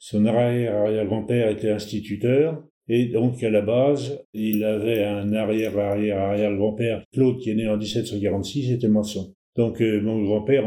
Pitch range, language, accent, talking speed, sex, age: 105-120 Hz, French, French, 140 wpm, male, 70-89